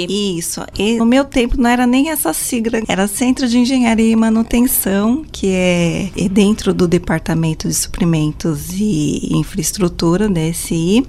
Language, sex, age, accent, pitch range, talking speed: Portuguese, female, 20-39, Brazilian, 185-240 Hz, 145 wpm